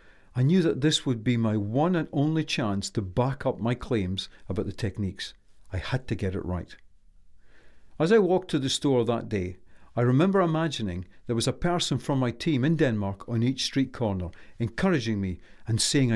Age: 50-69